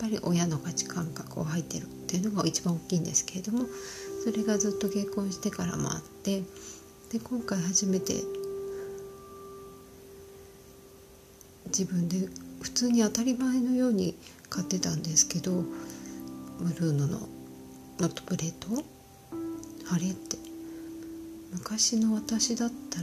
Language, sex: Japanese, female